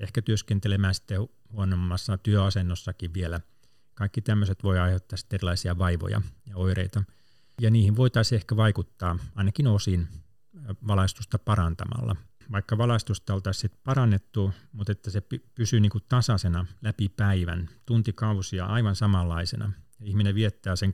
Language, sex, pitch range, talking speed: Finnish, male, 95-110 Hz, 125 wpm